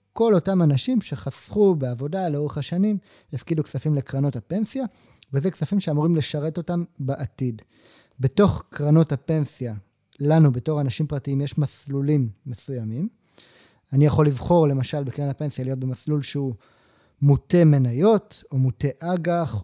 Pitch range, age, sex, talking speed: 140-180 Hz, 30-49, male, 125 wpm